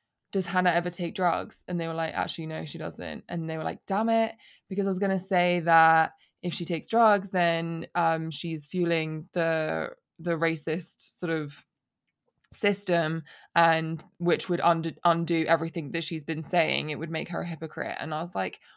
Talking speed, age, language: 190 wpm, 20-39, English